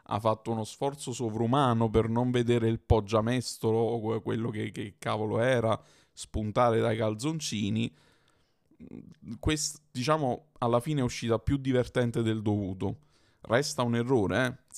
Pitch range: 110-130 Hz